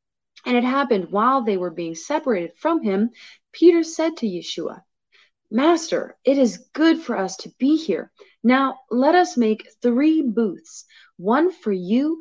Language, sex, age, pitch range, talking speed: English, female, 30-49, 185-260 Hz, 155 wpm